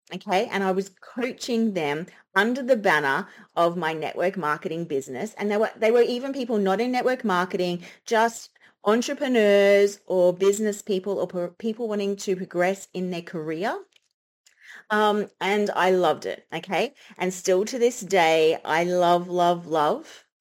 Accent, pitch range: Australian, 165-205 Hz